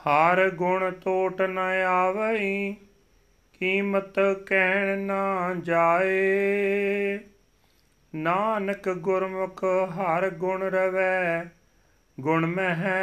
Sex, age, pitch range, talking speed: male, 40-59, 185-195 Hz, 75 wpm